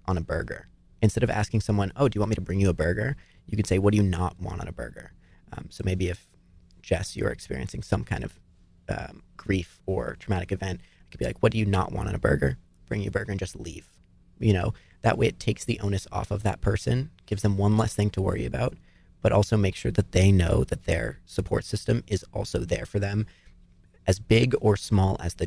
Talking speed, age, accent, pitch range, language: 245 wpm, 30-49, American, 90-105 Hz, English